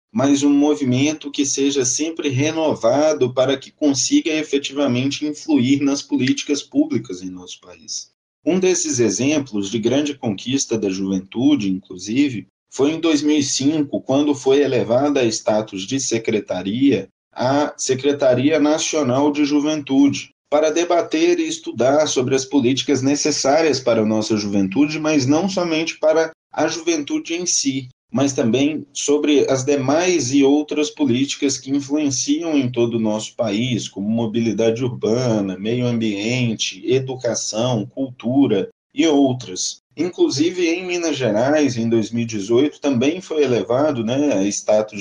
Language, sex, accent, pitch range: Portuguese, male, Brazilian, 125-155 Hz